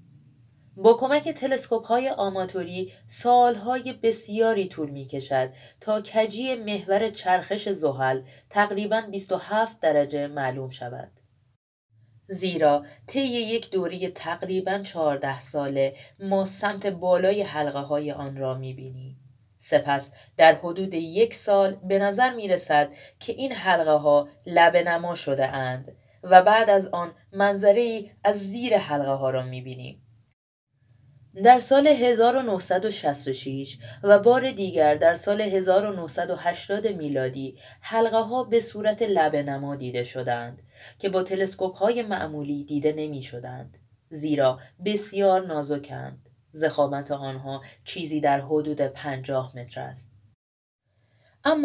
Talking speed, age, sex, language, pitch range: 115 wpm, 30-49, female, Persian, 135-205 Hz